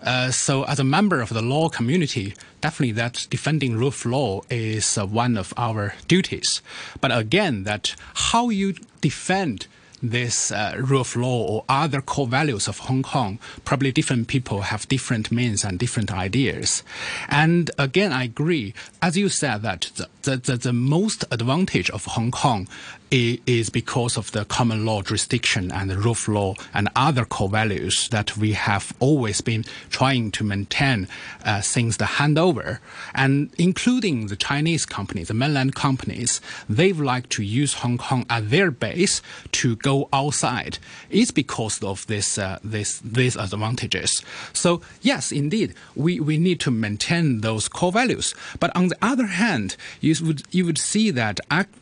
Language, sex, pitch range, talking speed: English, male, 110-150 Hz, 165 wpm